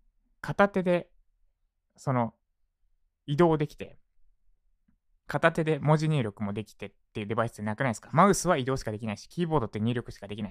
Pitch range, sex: 105-165 Hz, male